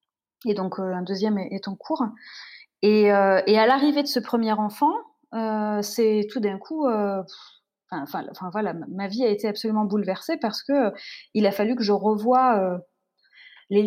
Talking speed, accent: 180 wpm, French